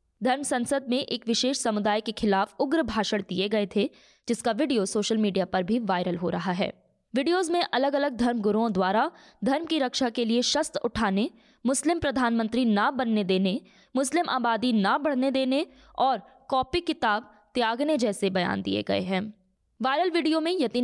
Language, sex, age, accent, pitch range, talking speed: Hindi, female, 20-39, native, 220-280 Hz, 175 wpm